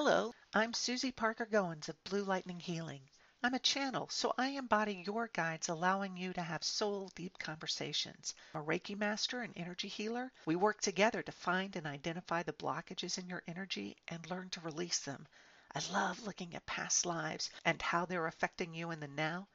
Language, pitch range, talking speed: English, 170-210 Hz, 185 wpm